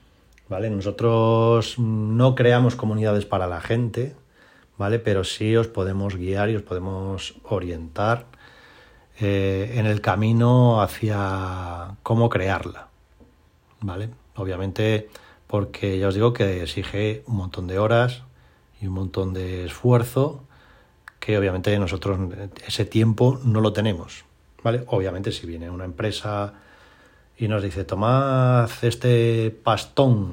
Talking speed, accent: 125 wpm, Spanish